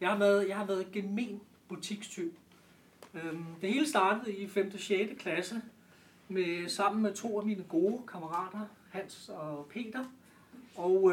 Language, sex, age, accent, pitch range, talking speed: Danish, male, 30-49, native, 180-215 Hz, 150 wpm